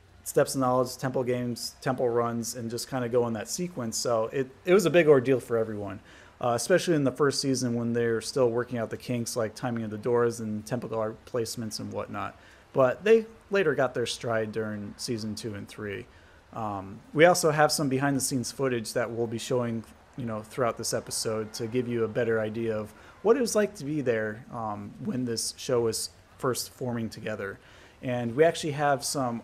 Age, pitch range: 30-49, 110-130 Hz